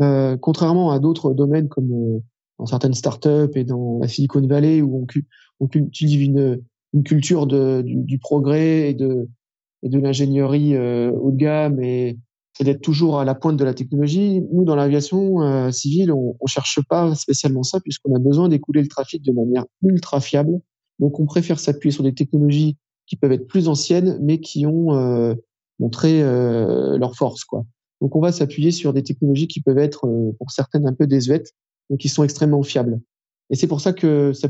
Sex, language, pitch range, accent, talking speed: male, French, 130-155 Hz, French, 190 wpm